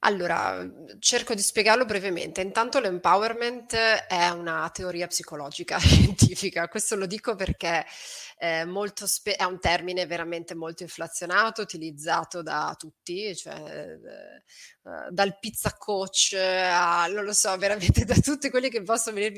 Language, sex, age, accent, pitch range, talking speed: Italian, female, 30-49, native, 165-210 Hz, 135 wpm